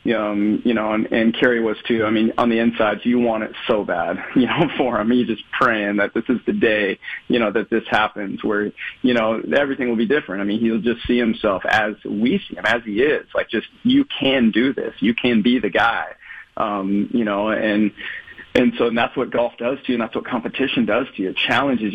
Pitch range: 105-120 Hz